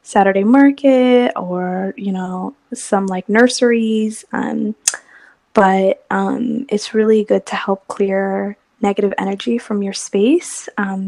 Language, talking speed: English, 125 wpm